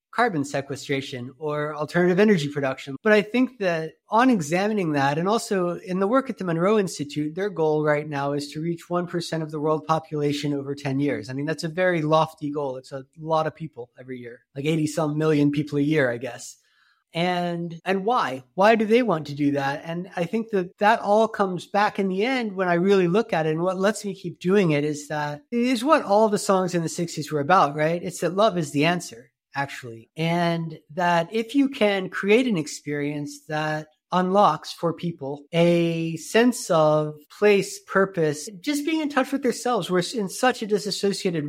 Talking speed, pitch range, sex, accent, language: 205 wpm, 150-200 Hz, male, American, English